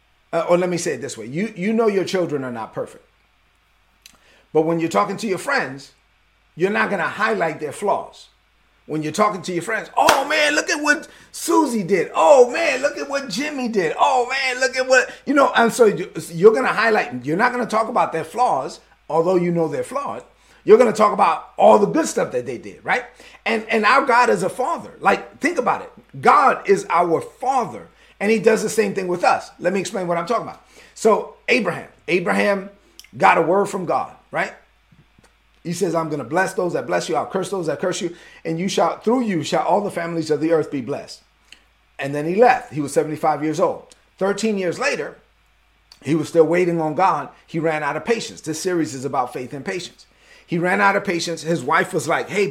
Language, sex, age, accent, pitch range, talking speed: English, male, 30-49, American, 160-225 Hz, 225 wpm